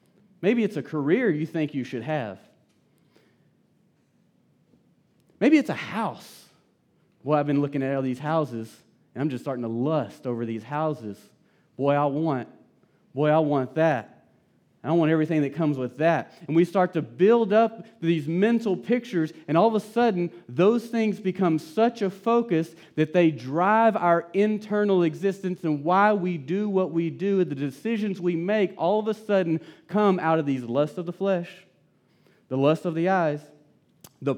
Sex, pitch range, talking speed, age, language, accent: male, 135-180 Hz, 175 wpm, 30-49, English, American